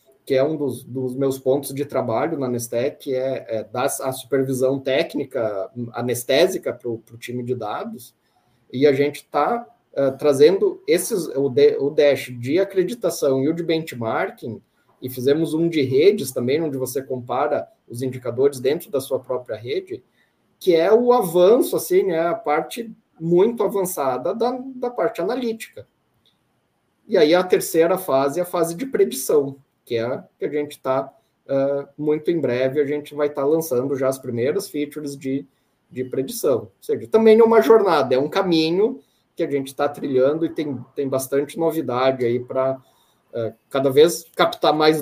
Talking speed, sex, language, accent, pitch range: 160 wpm, male, Portuguese, Brazilian, 130-175 Hz